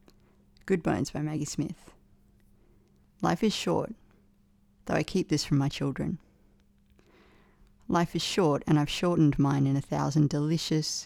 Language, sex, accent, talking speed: English, female, Australian, 140 wpm